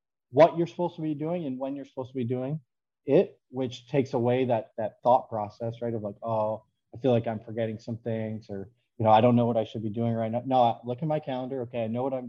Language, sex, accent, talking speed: English, male, American, 270 wpm